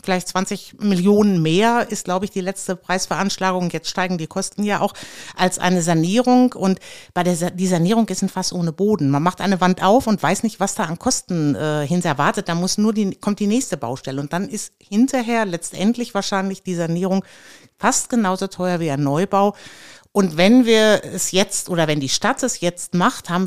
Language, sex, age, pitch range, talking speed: German, female, 60-79, 175-210 Hz, 205 wpm